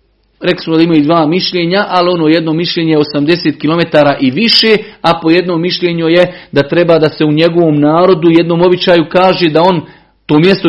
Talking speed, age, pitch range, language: 190 wpm, 40-59, 145-180 Hz, Croatian